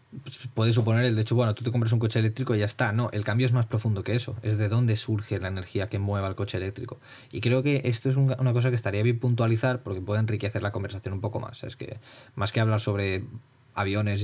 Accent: Spanish